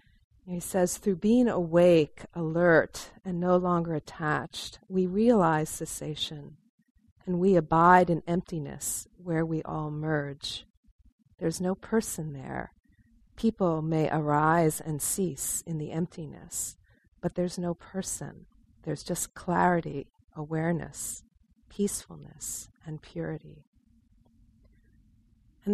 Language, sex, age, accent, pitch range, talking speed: English, female, 40-59, American, 145-180 Hz, 105 wpm